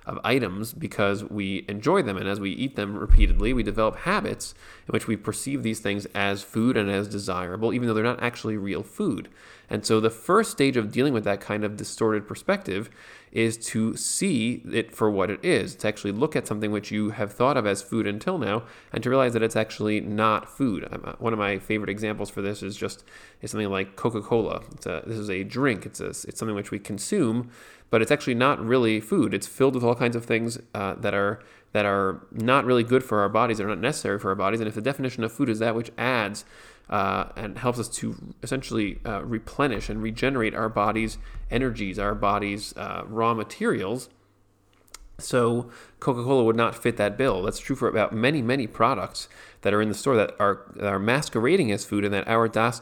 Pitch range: 100-120 Hz